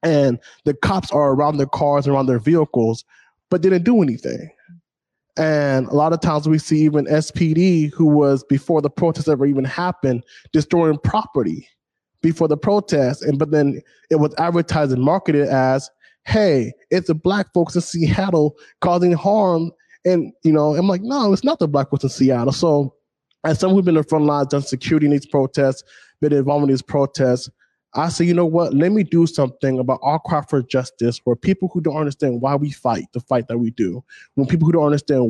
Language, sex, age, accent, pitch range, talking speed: English, male, 20-39, American, 130-160 Hz, 200 wpm